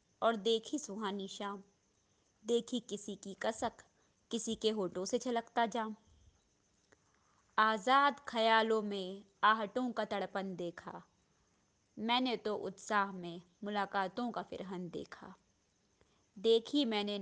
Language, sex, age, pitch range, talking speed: Hindi, female, 20-39, 190-230 Hz, 110 wpm